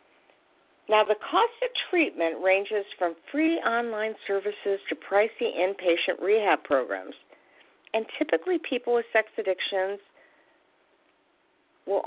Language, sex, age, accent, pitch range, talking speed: English, female, 50-69, American, 170-275 Hz, 110 wpm